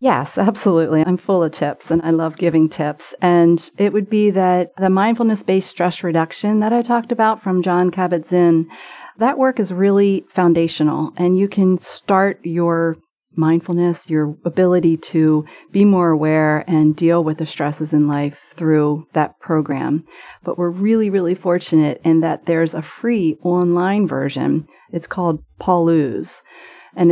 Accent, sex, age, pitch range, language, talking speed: American, female, 40-59, 155-190 Hz, English, 155 wpm